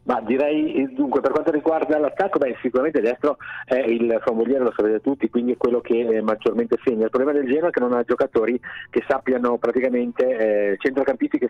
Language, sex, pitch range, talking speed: Italian, male, 110-140 Hz, 195 wpm